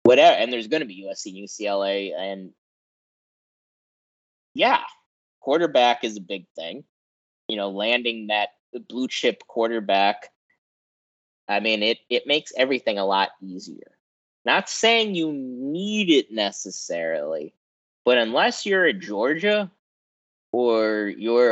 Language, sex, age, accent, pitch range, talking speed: English, male, 20-39, American, 105-170 Hz, 125 wpm